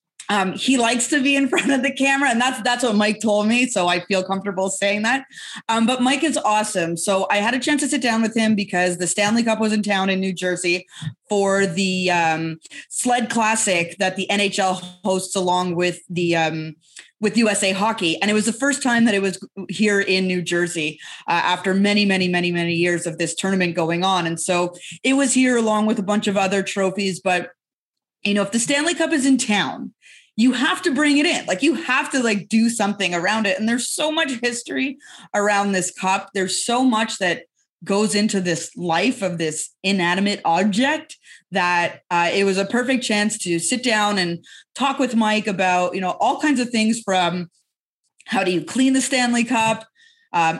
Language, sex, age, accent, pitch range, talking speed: English, female, 20-39, American, 180-235 Hz, 210 wpm